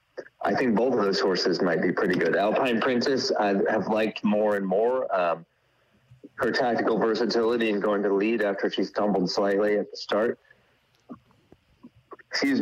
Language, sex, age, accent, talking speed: English, male, 40-59, American, 160 wpm